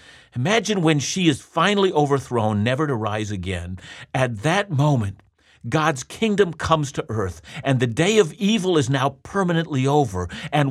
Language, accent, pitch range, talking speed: English, American, 115-165 Hz, 155 wpm